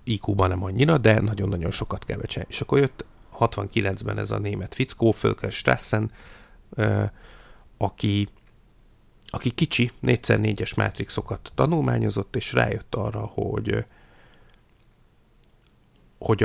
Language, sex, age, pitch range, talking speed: Hungarian, male, 30-49, 100-115 Hz, 105 wpm